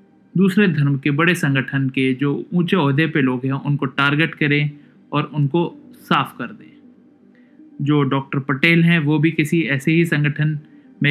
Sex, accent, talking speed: male, native, 165 wpm